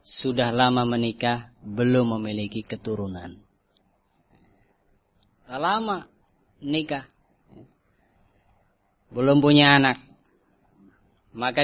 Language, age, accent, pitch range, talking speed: Indonesian, 20-39, native, 100-145 Hz, 65 wpm